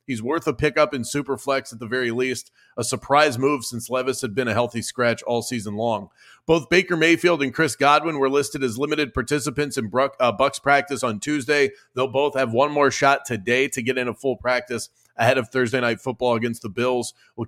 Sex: male